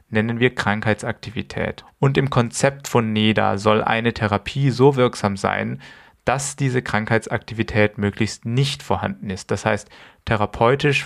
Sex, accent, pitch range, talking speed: male, German, 105-125 Hz, 130 wpm